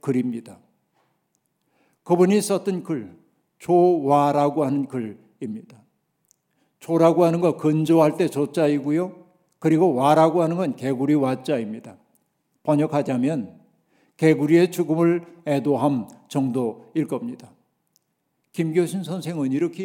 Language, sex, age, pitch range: Korean, male, 60-79, 145-170 Hz